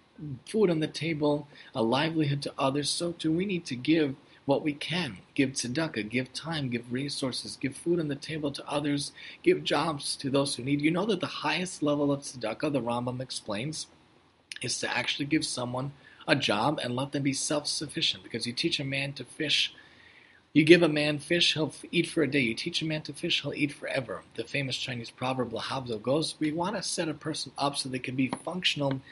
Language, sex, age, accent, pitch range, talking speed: English, male, 40-59, American, 130-155 Hz, 210 wpm